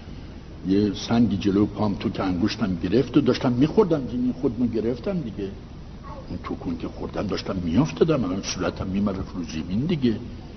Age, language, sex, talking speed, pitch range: 60-79, Persian, male, 150 wpm, 80-120 Hz